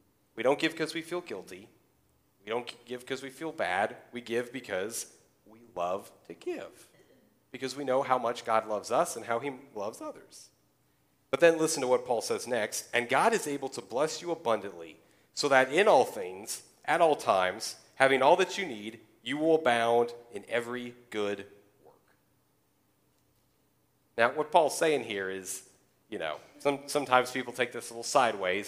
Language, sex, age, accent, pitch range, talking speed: English, male, 30-49, American, 110-145 Hz, 180 wpm